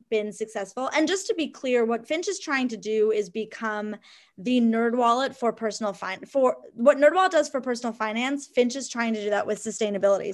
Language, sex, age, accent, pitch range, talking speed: English, female, 20-39, American, 210-245 Hz, 210 wpm